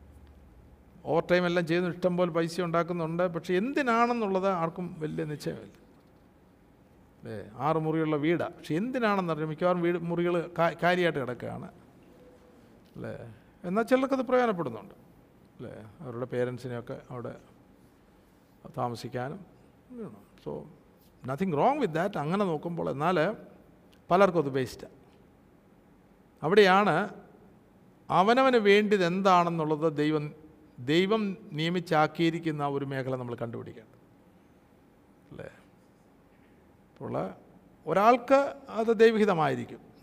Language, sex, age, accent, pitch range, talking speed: Malayalam, male, 50-69, native, 125-200 Hz, 90 wpm